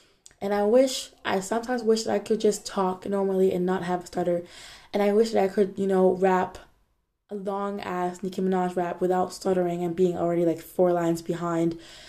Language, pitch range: Danish, 180-215 Hz